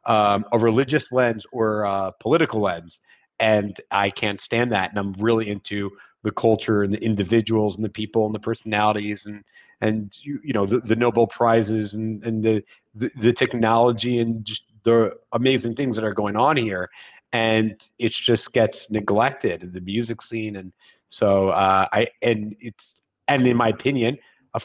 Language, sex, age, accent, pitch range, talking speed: English, male, 30-49, American, 100-120 Hz, 180 wpm